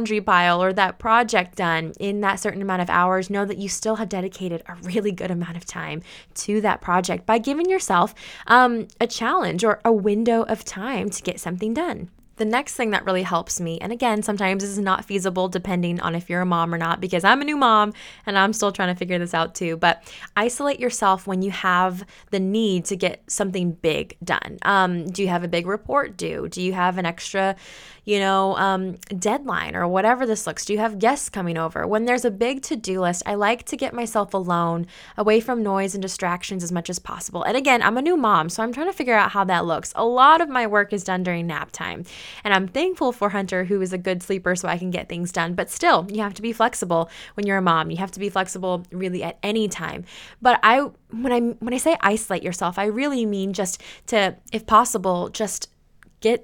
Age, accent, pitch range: 20-39, American, 185-230 Hz